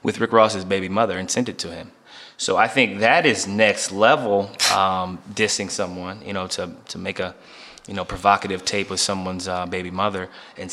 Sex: male